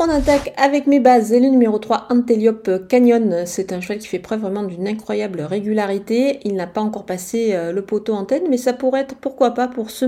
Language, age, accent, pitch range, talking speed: French, 40-59, French, 205-250 Hz, 220 wpm